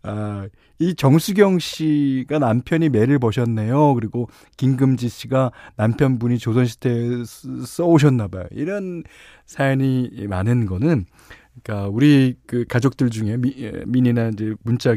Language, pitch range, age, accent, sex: Korean, 100-145 Hz, 40-59, native, male